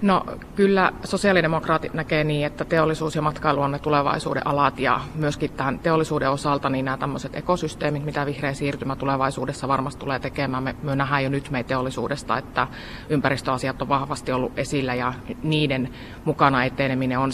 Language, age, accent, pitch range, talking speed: Finnish, 30-49, native, 130-155 Hz, 150 wpm